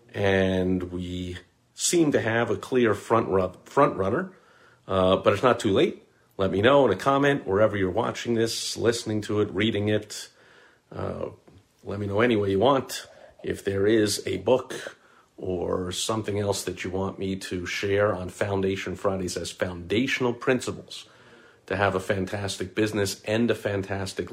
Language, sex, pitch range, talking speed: English, male, 90-115 Hz, 165 wpm